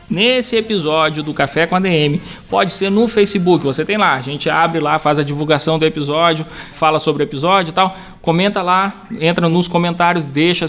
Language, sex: Portuguese, male